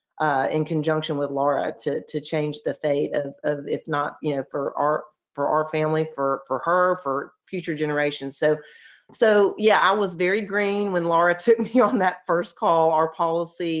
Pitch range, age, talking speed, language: 145-170 Hz, 40-59, 190 wpm, English